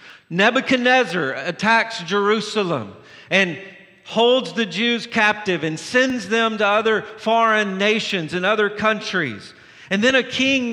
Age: 50-69